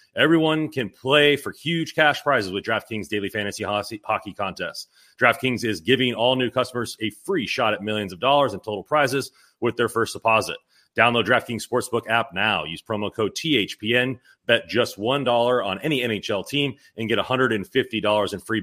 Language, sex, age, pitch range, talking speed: English, male, 30-49, 105-130 Hz, 175 wpm